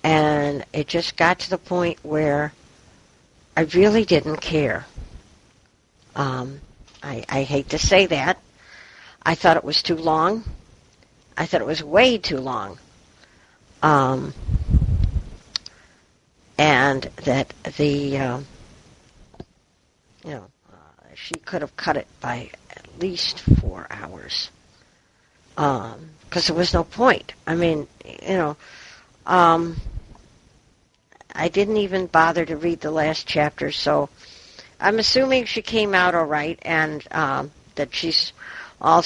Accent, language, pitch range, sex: American, English, 145-180 Hz, female